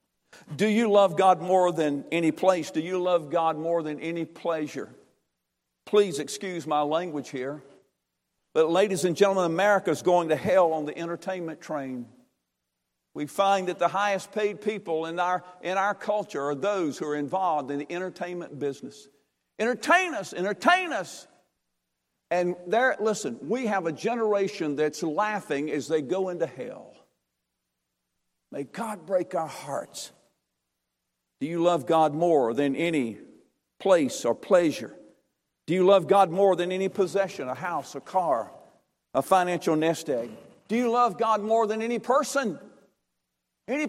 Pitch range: 145-205 Hz